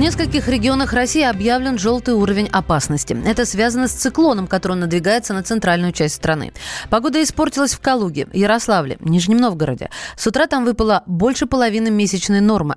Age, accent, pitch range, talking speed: 20-39, native, 190-245 Hz, 155 wpm